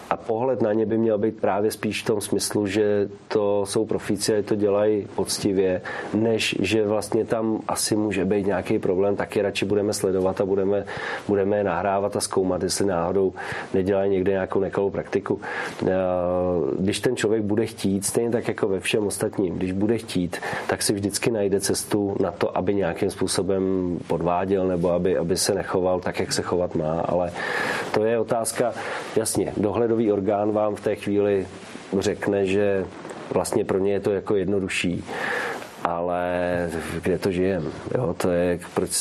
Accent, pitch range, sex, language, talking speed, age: native, 95-105 Hz, male, Czech, 170 wpm, 40-59